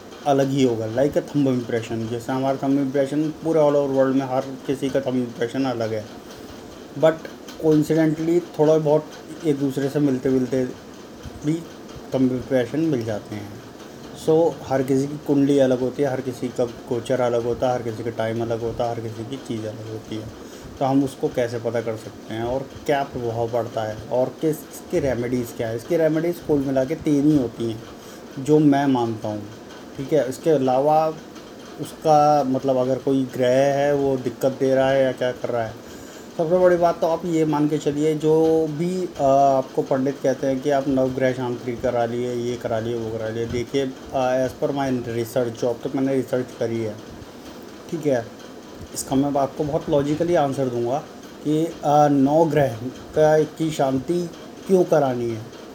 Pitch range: 120-150 Hz